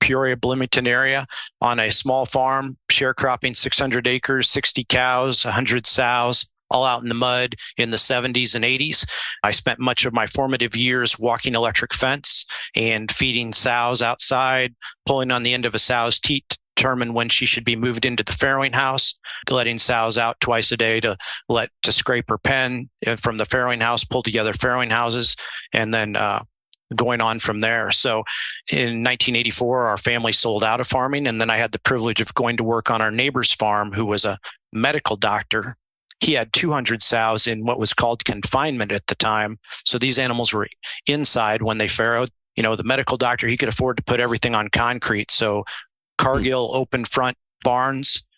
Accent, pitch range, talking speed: American, 115-130 Hz, 185 wpm